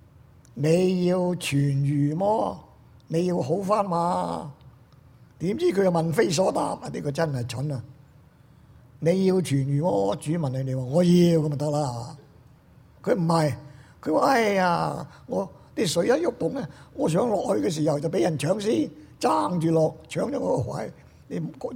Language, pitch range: Chinese, 125-160 Hz